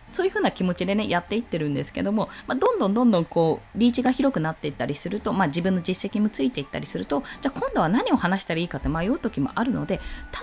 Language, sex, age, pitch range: Japanese, female, 20-39, 170-260 Hz